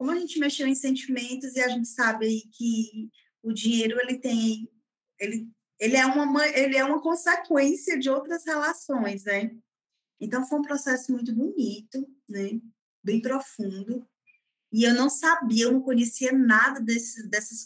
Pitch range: 215-275 Hz